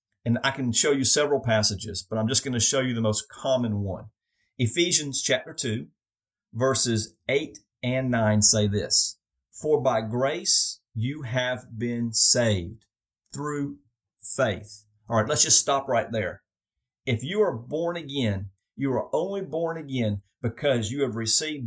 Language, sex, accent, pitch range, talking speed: English, male, American, 110-150 Hz, 160 wpm